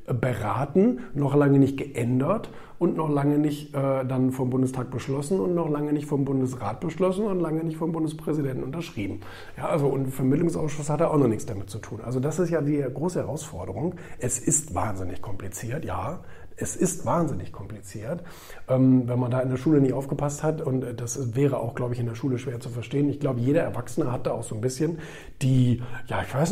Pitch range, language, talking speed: 120-155 Hz, German, 205 wpm